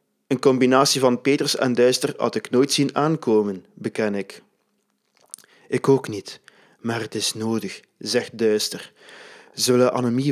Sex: male